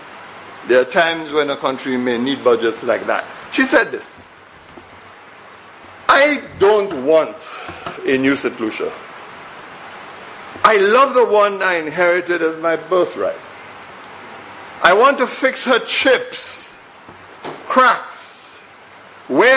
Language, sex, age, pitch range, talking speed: English, male, 60-79, 175-245 Hz, 115 wpm